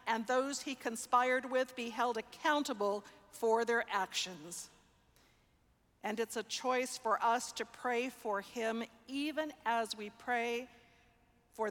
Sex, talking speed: female, 135 wpm